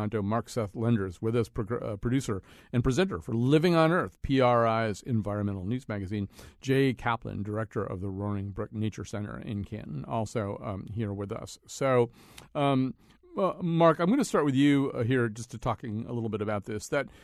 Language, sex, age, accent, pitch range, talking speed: English, male, 50-69, American, 110-140 Hz, 180 wpm